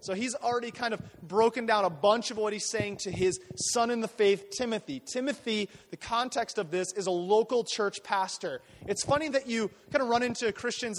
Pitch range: 185-230 Hz